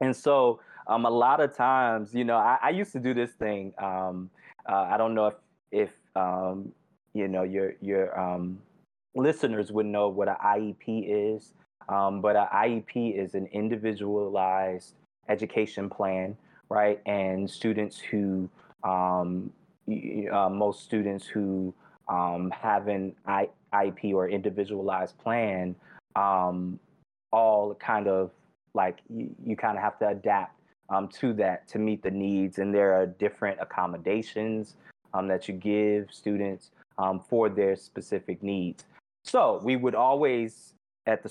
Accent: American